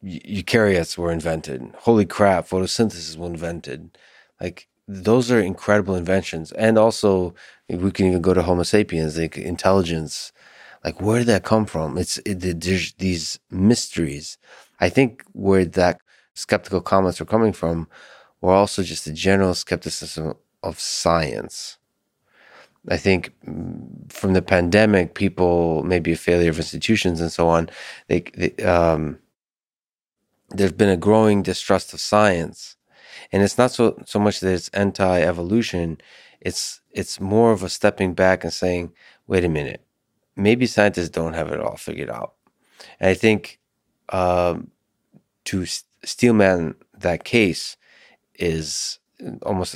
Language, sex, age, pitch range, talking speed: English, male, 30-49, 85-100 Hz, 140 wpm